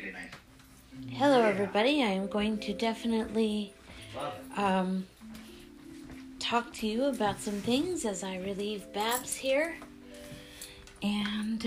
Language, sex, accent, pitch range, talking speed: English, female, American, 185-225 Hz, 105 wpm